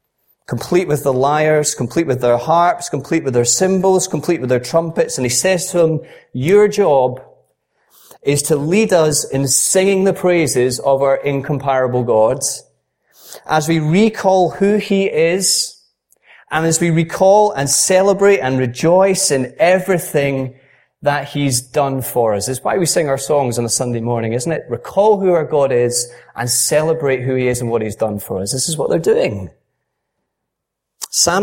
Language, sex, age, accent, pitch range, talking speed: English, male, 30-49, British, 130-180 Hz, 170 wpm